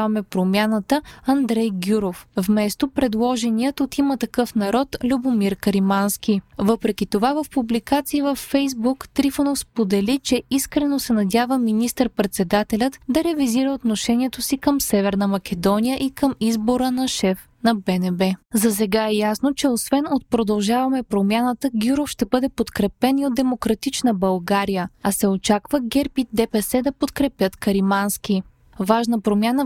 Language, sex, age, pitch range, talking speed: Bulgarian, female, 20-39, 210-270 Hz, 135 wpm